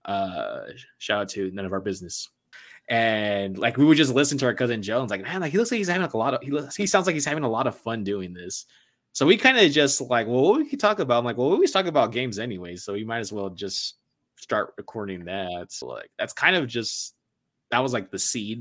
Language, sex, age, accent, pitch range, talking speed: English, male, 20-39, American, 100-135 Hz, 270 wpm